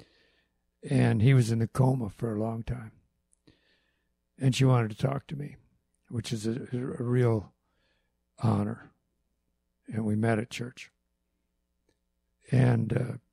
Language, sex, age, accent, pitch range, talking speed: English, male, 60-79, American, 100-130 Hz, 135 wpm